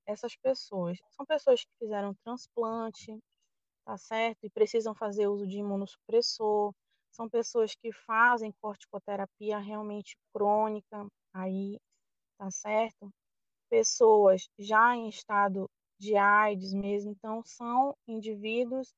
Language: Portuguese